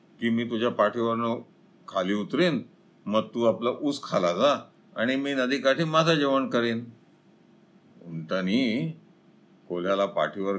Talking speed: 120 wpm